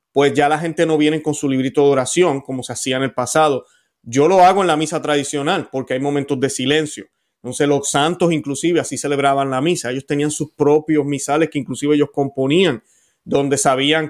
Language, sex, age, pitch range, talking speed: Spanish, male, 30-49, 130-150 Hz, 205 wpm